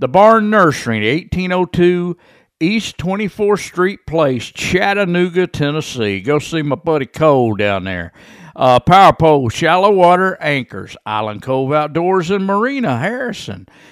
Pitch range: 125-185 Hz